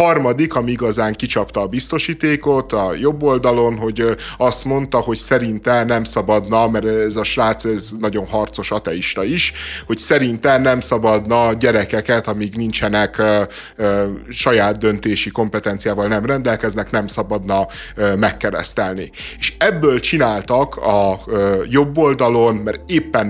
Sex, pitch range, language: male, 105-120 Hz, Hungarian